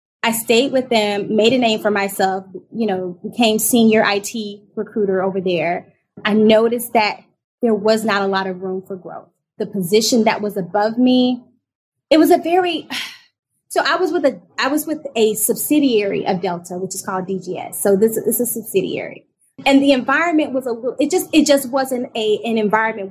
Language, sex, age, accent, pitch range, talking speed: English, female, 20-39, American, 195-245 Hz, 195 wpm